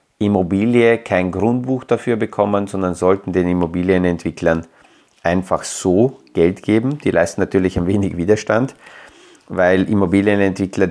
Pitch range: 90-105 Hz